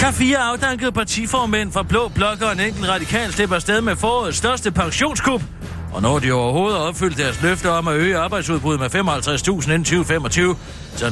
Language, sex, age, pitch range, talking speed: Danish, male, 60-79, 145-195 Hz, 165 wpm